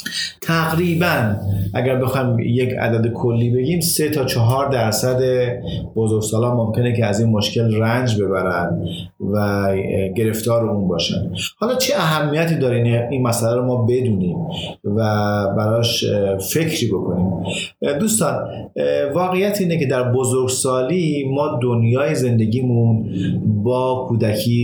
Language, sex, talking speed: Persian, male, 115 wpm